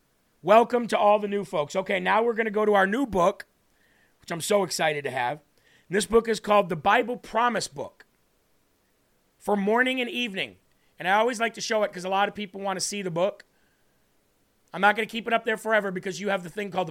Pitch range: 180-225 Hz